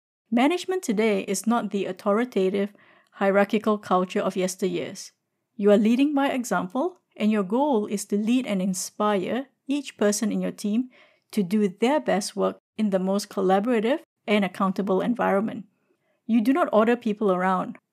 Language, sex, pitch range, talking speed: English, female, 195-245 Hz, 155 wpm